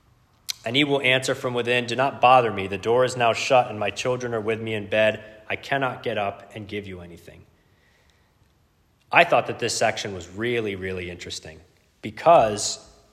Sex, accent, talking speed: male, American, 190 wpm